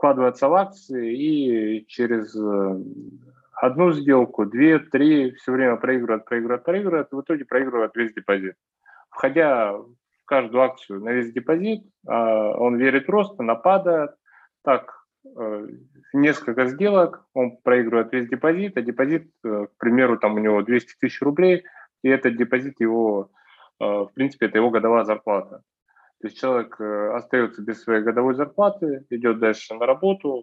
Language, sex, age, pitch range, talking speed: Russian, male, 20-39, 110-145 Hz, 135 wpm